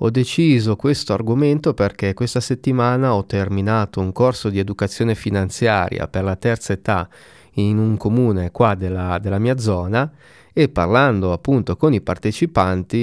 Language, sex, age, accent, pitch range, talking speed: Italian, male, 30-49, native, 95-120 Hz, 145 wpm